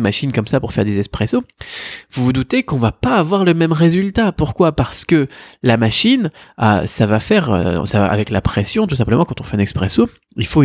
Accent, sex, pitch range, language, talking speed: French, male, 110-160 Hz, French, 235 wpm